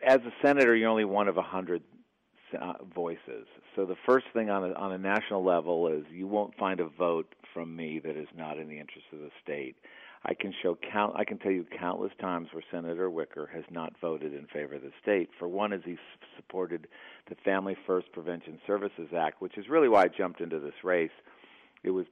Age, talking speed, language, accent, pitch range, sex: 50-69, 215 wpm, English, American, 80-95 Hz, male